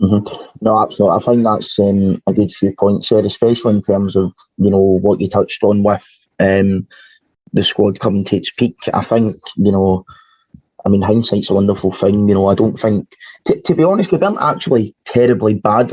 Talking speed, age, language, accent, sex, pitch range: 205 wpm, 20-39, English, British, male, 100-115 Hz